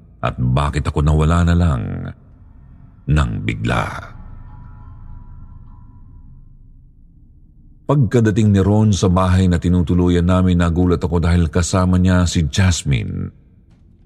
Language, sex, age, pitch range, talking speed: Filipino, male, 50-69, 75-95 Hz, 100 wpm